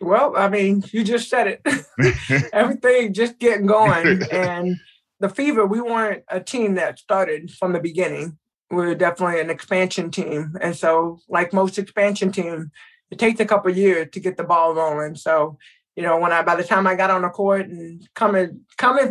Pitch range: 170-205 Hz